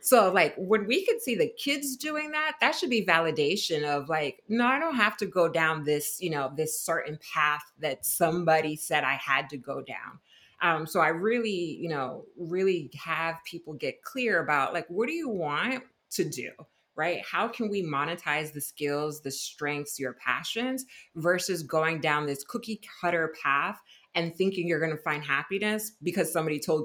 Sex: female